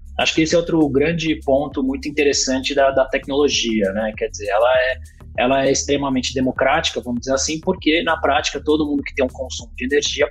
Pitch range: 120-145 Hz